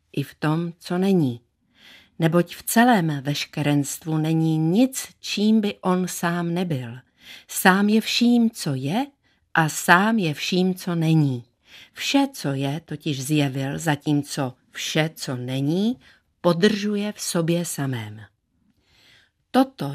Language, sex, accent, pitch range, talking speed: Czech, female, native, 140-185 Hz, 125 wpm